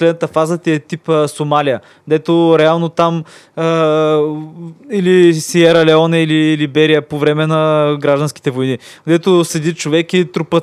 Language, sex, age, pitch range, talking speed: Bulgarian, male, 20-39, 140-170 Hz, 145 wpm